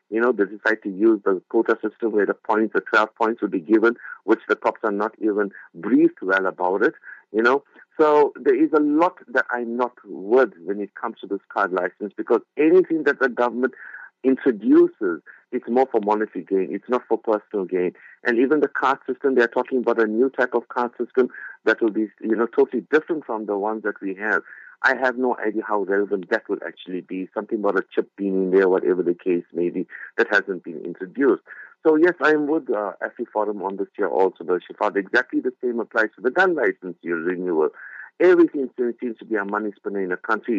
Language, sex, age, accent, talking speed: English, male, 50-69, Indian, 225 wpm